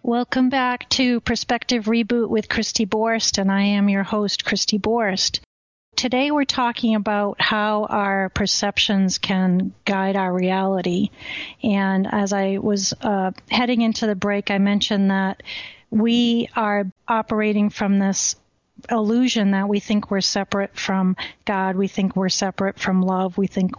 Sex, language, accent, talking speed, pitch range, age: female, English, American, 150 wpm, 195-225 Hz, 40-59